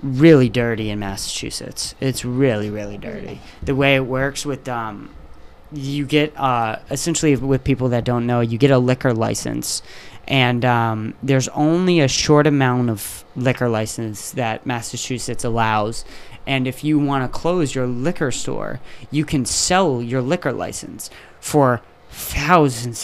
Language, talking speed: English, 150 wpm